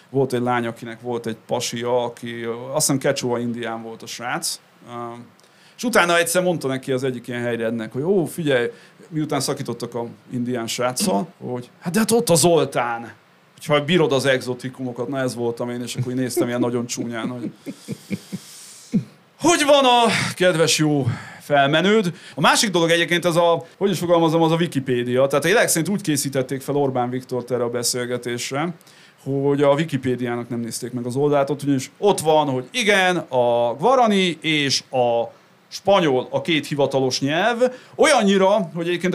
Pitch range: 125-175 Hz